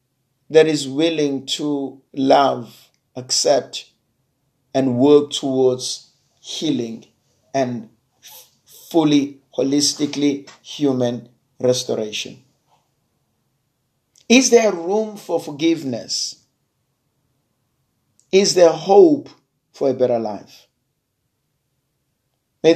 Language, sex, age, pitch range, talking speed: English, male, 50-69, 125-145 Hz, 75 wpm